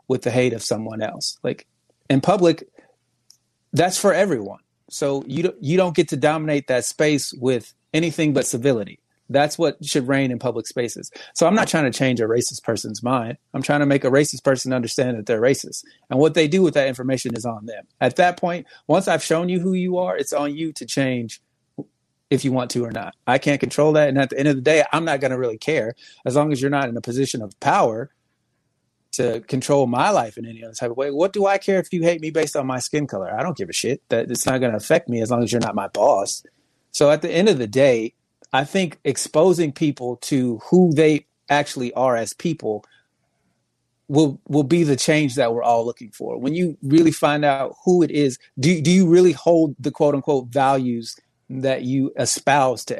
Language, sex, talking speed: English, male, 230 wpm